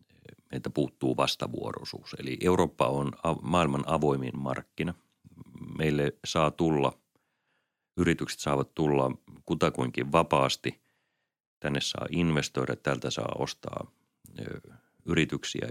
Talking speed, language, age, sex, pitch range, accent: 90 wpm, Finnish, 30-49, male, 70-85 Hz, native